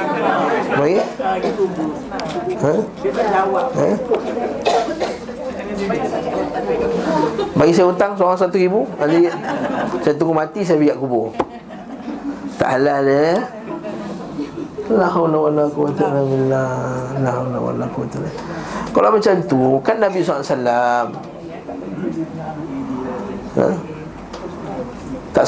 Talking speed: 70 wpm